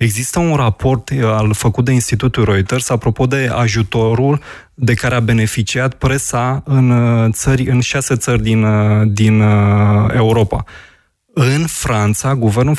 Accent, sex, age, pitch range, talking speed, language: native, male, 20-39, 115-140 Hz, 120 wpm, Romanian